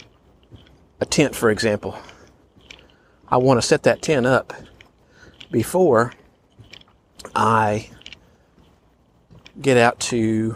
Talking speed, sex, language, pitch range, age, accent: 90 wpm, male, English, 105-135 Hz, 40-59, American